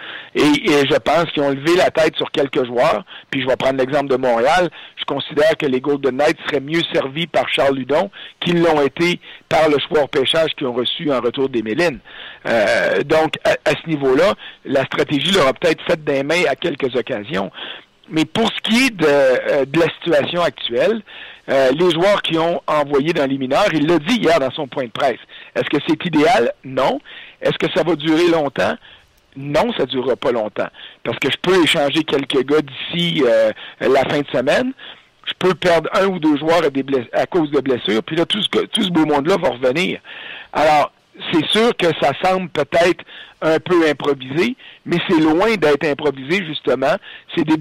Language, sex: French, male